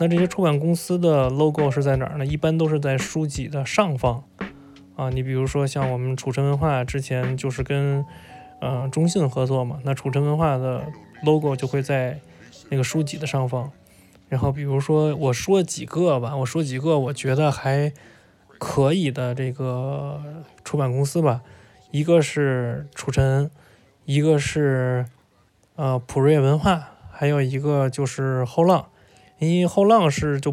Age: 20-39